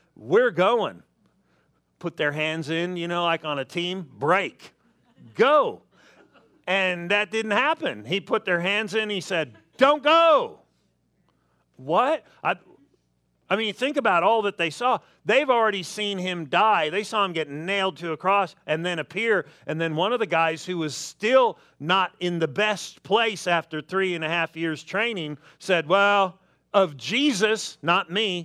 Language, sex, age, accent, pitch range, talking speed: English, male, 40-59, American, 150-200 Hz, 170 wpm